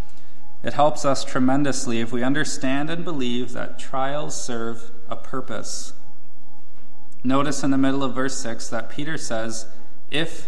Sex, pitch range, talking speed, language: male, 115-140 Hz, 145 wpm, English